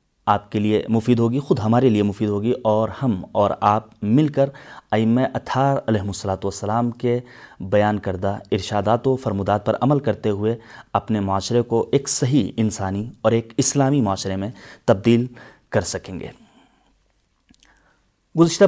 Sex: male